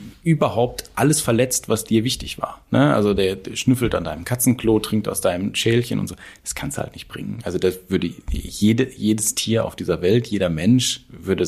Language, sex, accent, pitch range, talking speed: German, male, German, 95-115 Hz, 205 wpm